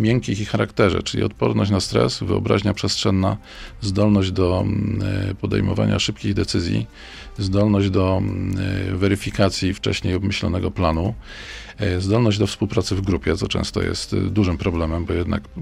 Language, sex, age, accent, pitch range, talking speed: Polish, male, 40-59, native, 90-105 Hz, 125 wpm